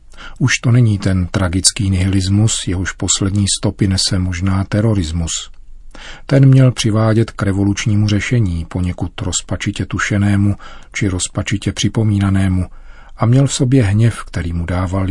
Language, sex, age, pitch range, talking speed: Czech, male, 40-59, 95-110 Hz, 125 wpm